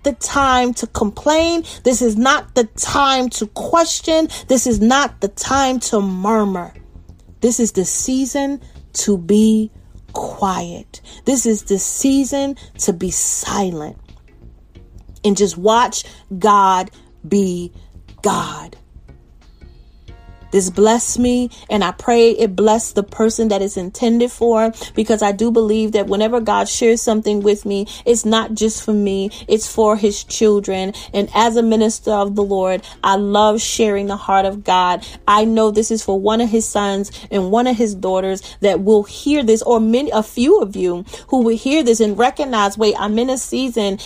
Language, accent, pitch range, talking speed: English, American, 200-250 Hz, 165 wpm